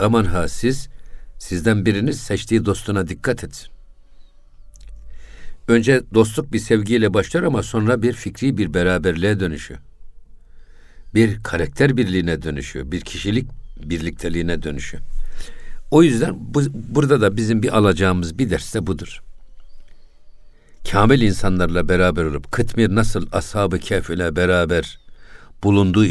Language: Turkish